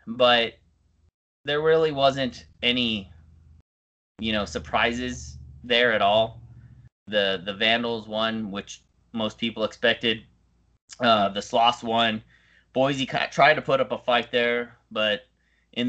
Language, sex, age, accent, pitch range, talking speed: English, male, 20-39, American, 95-120 Hz, 125 wpm